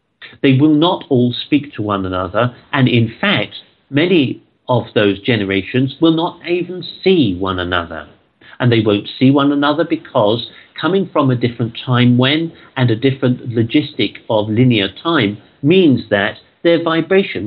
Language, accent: English, British